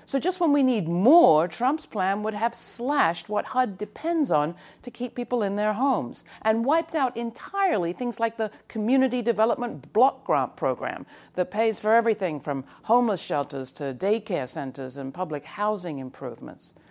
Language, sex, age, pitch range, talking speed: English, female, 60-79, 185-265 Hz, 165 wpm